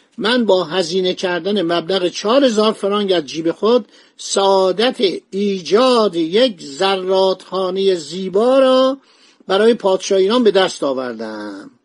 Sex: male